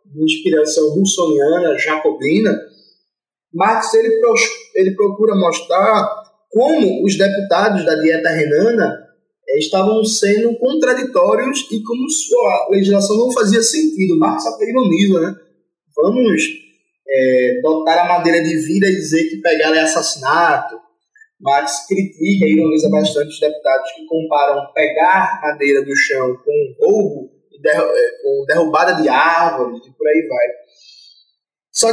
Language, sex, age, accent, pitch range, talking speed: Portuguese, male, 20-39, Brazilian, 155-250 Hz, 115 wpm